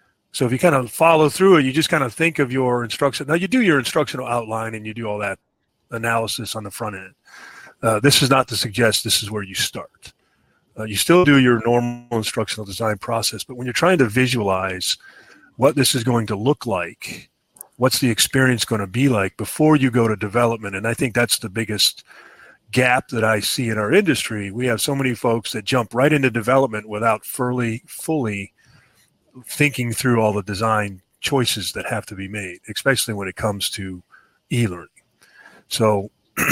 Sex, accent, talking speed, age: male, American, 195 wpm, 40-59